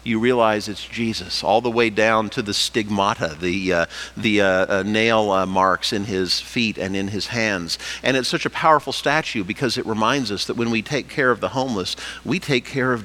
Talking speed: 220 wpm